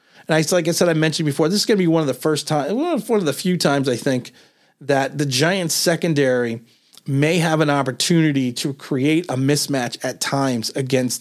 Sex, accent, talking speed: male, American, 220 wpm